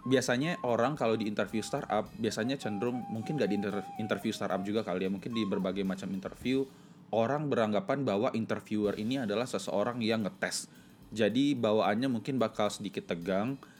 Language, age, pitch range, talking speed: Indonesian, 20-39, 100-120 Hz, 155 wpm